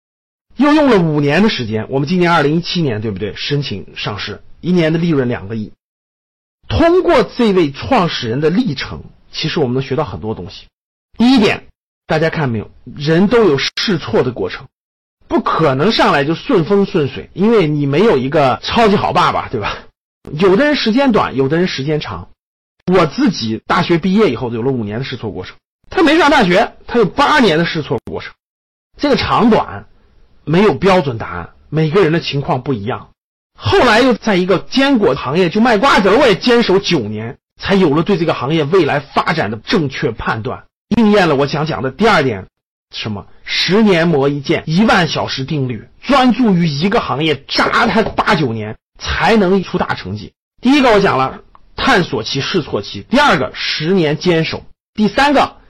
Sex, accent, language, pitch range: male, native, Chinese, 130-205 Hz